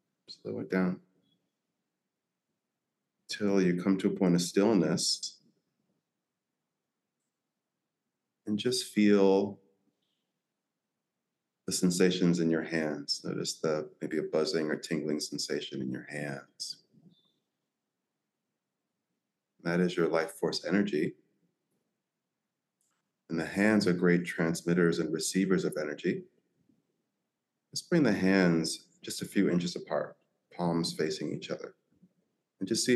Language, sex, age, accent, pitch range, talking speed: English, male, 30-49, American, 80-95 Hz, 115 wpm